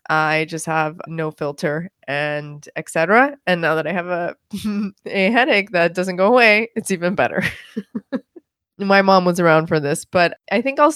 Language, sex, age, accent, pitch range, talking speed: English, female, 20-39, American, 160-205 Hz, 180 wpm